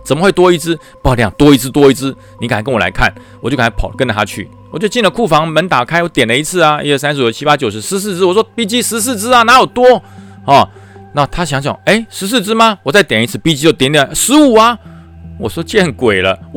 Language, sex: Chinese, male